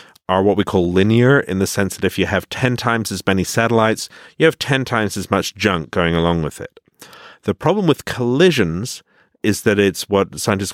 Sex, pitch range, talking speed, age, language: male, 90-110 Hz, 205 wpm, 50-69, English